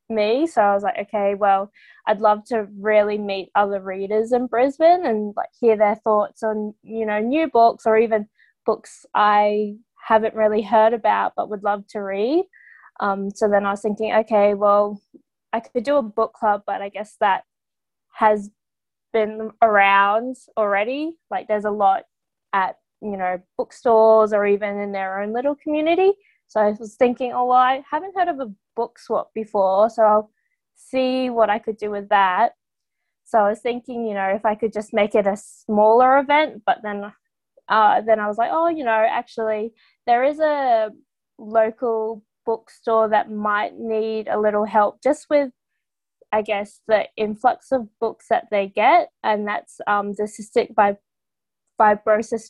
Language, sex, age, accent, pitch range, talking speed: English, female, 20-39, Australian, 210-250 Hz, 175 wpm